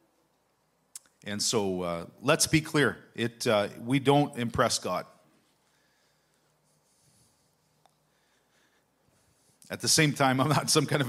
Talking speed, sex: 115 wpm, male